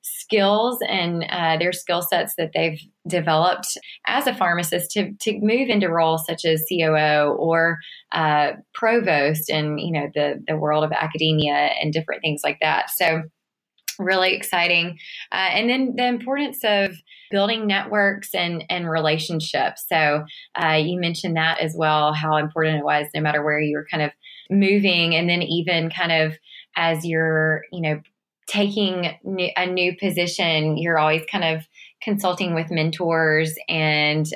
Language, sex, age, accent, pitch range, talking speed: English, female, 20-39, American, 155-190 Hz, 155 wpm